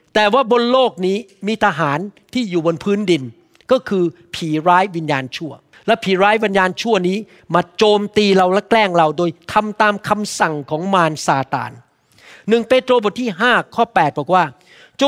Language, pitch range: Thai, 170-245 Hz